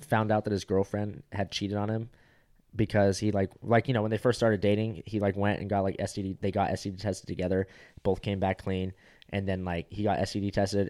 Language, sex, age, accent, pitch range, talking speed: English, male, 20-39, American, 95-110 Hz, 235 wpm